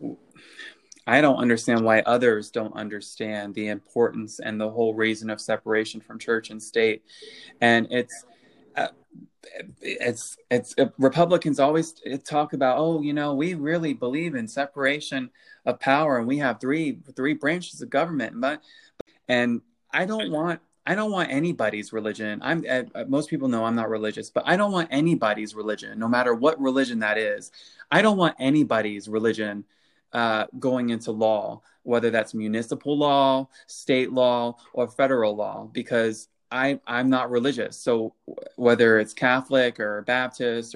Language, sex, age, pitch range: English, male, 20-39, 110-140 Hz